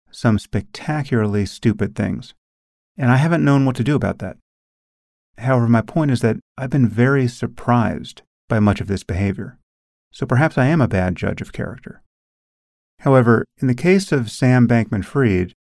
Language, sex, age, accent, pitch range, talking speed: English, male, 40-59, American, 95-125 Hz, 165 wpm